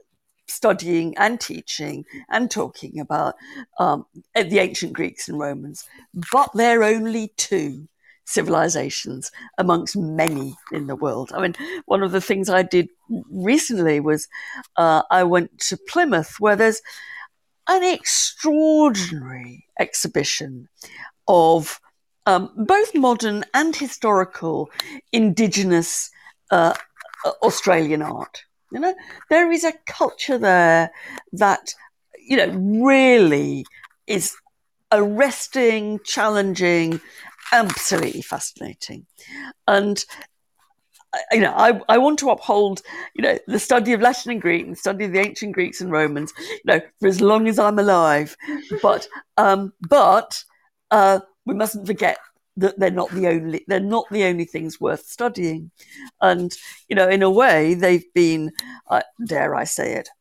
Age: 60-79